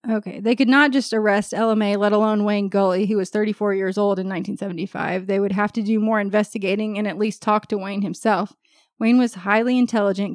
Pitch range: 200-235 Hz